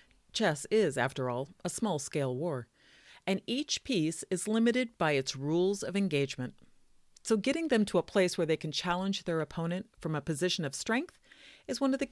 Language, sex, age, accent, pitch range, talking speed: English, female, 40-59, American, 160-240 Hz, 190 wpm